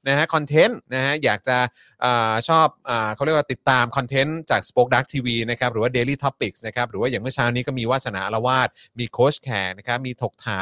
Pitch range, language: 115-145 Hz, Thai